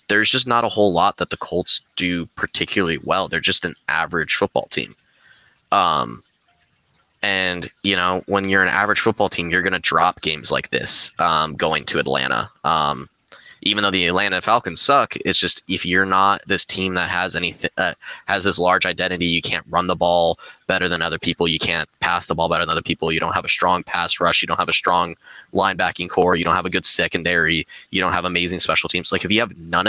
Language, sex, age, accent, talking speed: English, male, 20-39, American, 220 wpm